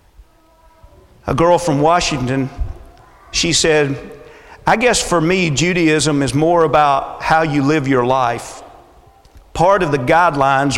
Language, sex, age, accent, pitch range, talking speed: English, male, 40-59, American, 155-215 Hz, 130 wpm